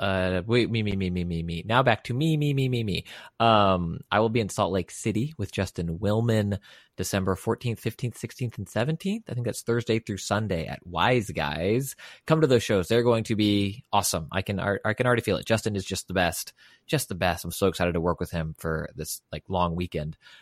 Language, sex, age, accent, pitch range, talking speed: English, male, 20-39, American, 90-115 Hz, 230 wpm